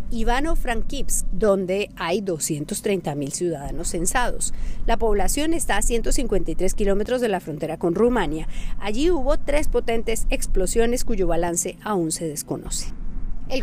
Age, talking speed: 40-59, 125 wpm